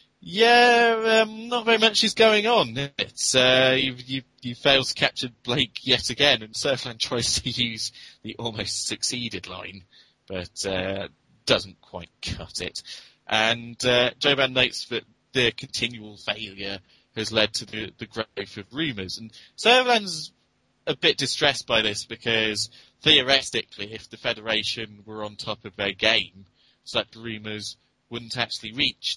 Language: English